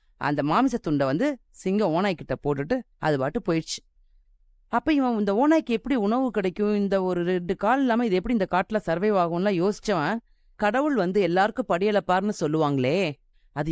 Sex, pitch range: female, 150-215 Hz